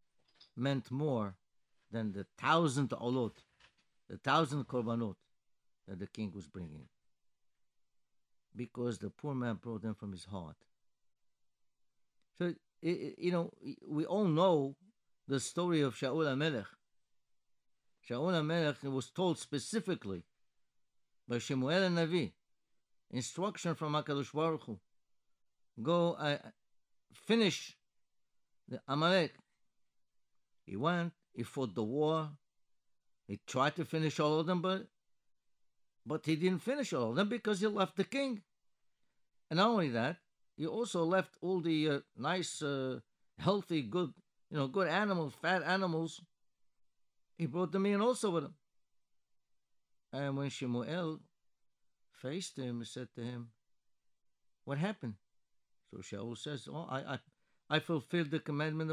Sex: male